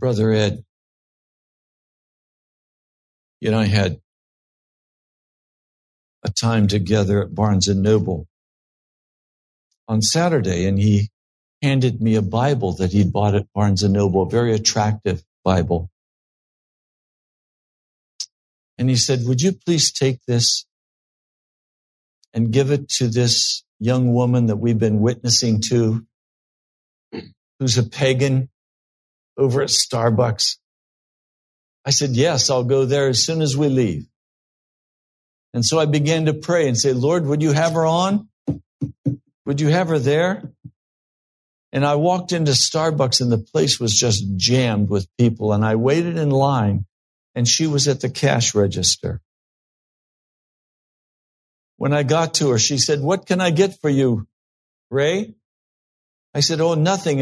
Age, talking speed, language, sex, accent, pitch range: 60-79, 135 wpm, English, male, American, 105-145 Hz